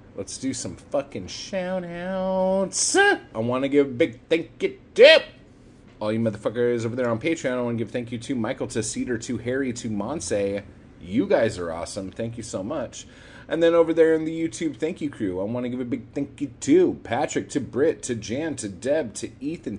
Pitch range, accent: 115-165 Hz, American